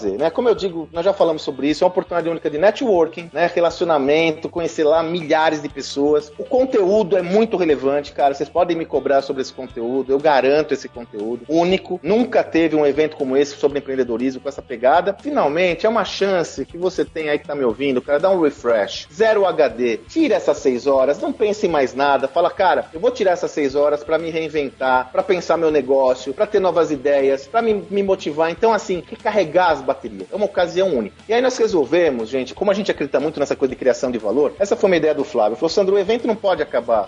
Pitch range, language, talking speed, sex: 140-190 Hz, Portuguese, 225 wpm, male